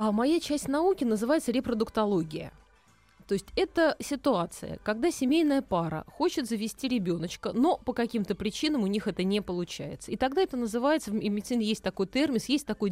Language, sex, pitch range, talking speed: Russian, female, 190-250 Hz, 165 wpm